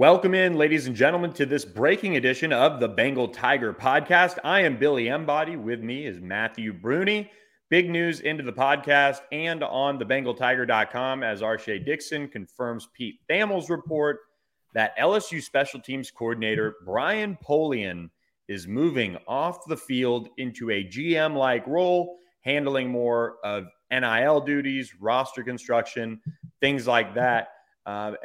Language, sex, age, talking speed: English, male, 30-49, 140 wpm